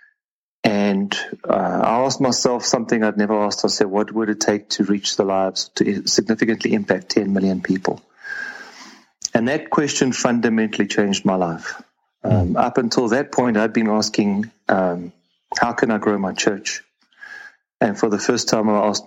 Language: English